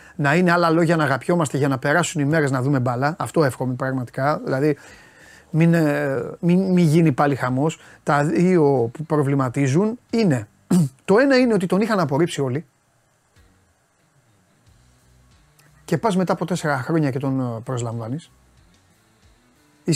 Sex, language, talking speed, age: male, Greek, 140 wpm, 30-49